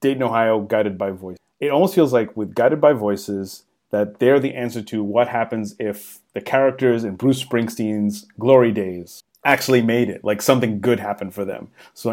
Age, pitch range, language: 30-49, 105-125 Hz, English